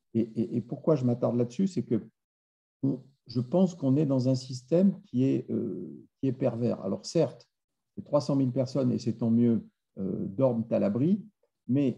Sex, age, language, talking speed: male, 50-69, French, 165 wpm